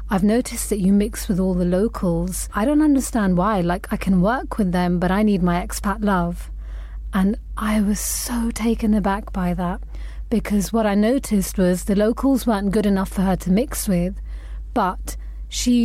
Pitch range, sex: 185-215 Hz, female